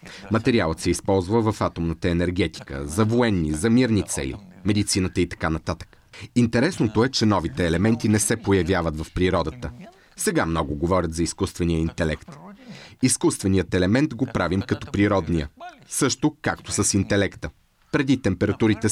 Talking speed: 135 wpm